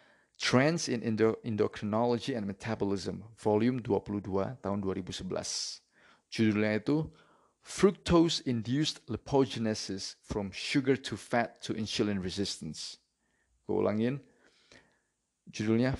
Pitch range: 100-120 Hz